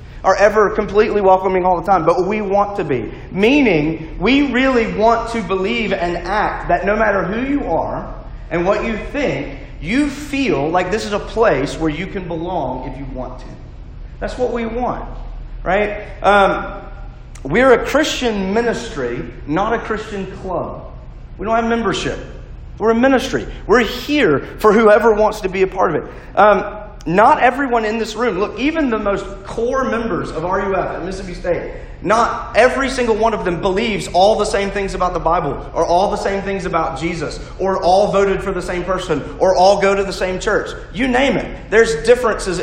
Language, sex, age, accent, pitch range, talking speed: English, male, 40-59, American, 170-220 Hz, 185 wpm